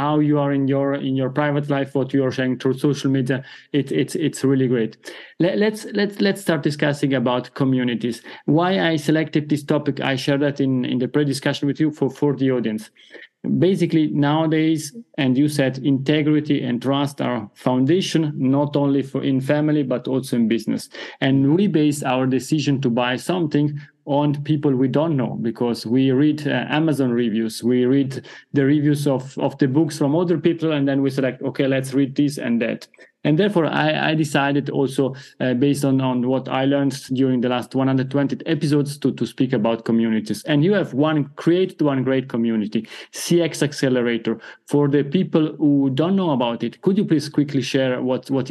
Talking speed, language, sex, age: 190 wpm, English, male, 40-59